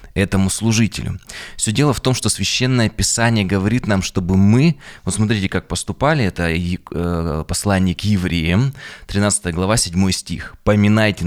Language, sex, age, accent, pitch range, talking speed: Russian, male, 20-39, native, 90-110 Hz, 140 wpm